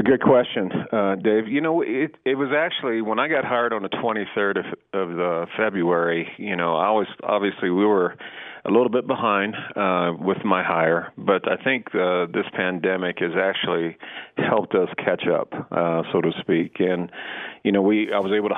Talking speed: 190 wpm